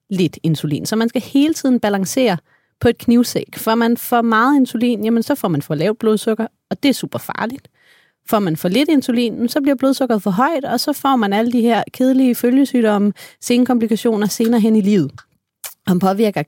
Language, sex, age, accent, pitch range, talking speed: Danish, female, 30-49, native, 175-235 Hz, 205 wpm